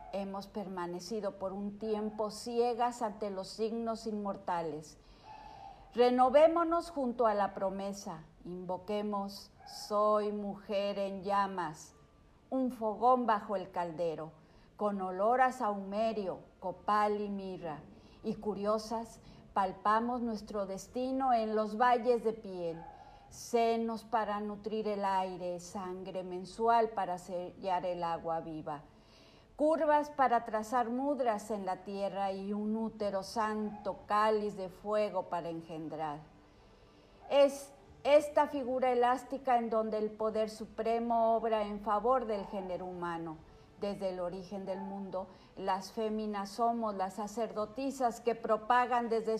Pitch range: 190-235 Hz